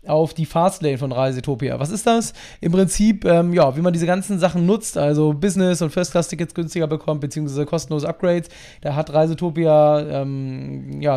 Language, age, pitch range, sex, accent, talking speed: German, 20-39, 160-205 Hz, male, German, 185 wpm